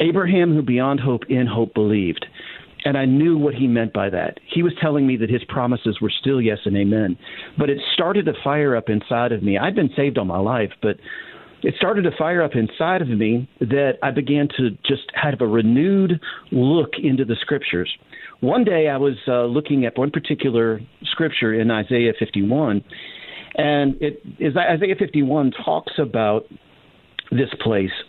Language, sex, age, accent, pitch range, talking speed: English, male, 50-69, American, 115-150 Hz, 180 wpm